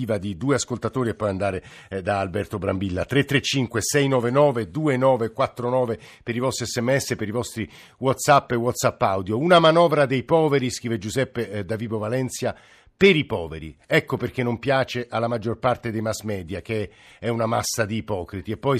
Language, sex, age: Italian, male, 50-69